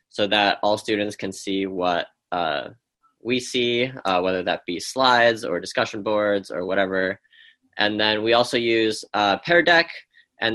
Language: English